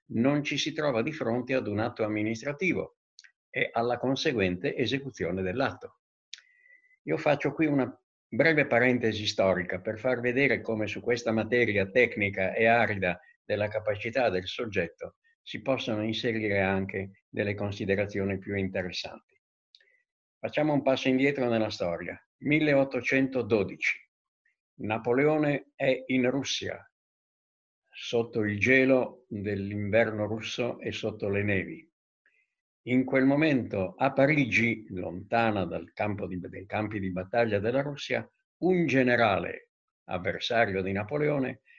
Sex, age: male, 60-79